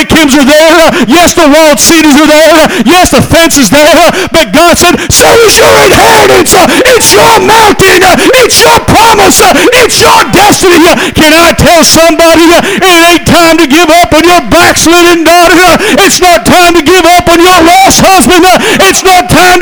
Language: English